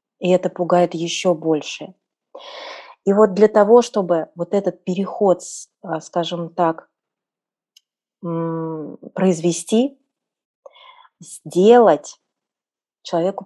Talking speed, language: 80 wpm, Russian